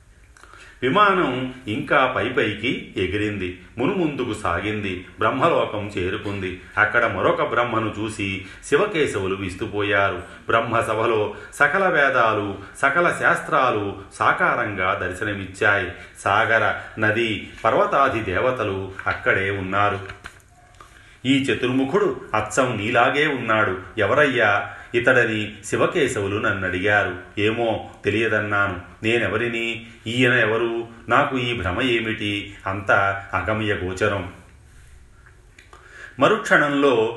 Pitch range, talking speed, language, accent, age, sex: 95-115 Hz, 80 wpm, Telugu, native, 40-59, male